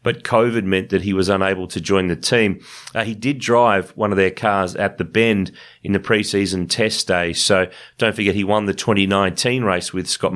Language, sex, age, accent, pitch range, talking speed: English, male, 30-49, Australian, 100-130 Hz, 215 wpm